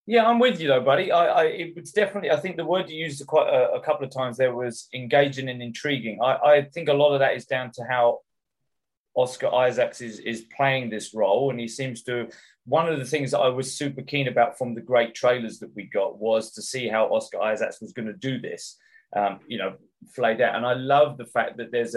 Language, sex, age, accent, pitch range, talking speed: English, male, 20-39, British, 115-140 Hz, 240 wpm